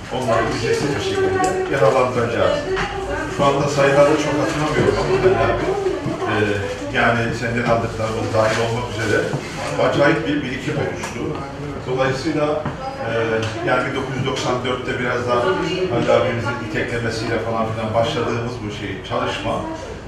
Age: 40-59